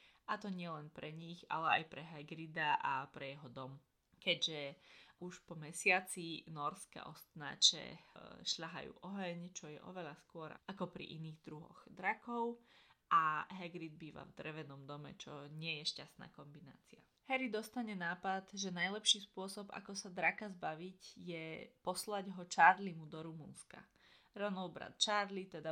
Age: 20-39